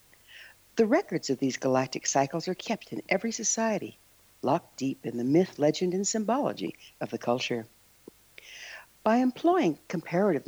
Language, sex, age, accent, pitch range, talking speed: English, female, 60-79, American, 135-220 Hz, 145 wpm